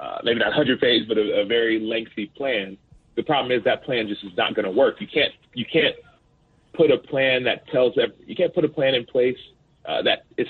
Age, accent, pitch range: 30-49, American, 110-145 Hz